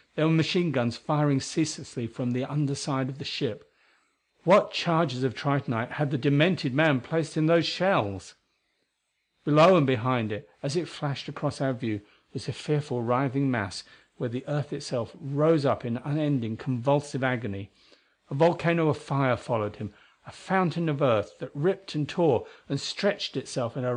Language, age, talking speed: English, 50-69, 170 wpm